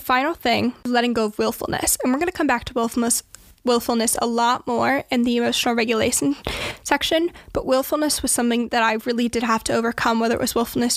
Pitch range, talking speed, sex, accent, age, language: 235-260 Hz, 200 wpm, female, American, 10-29, English